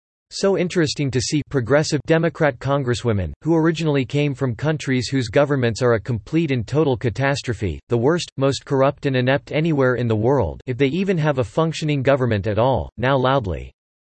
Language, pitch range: English, 115-150 Hz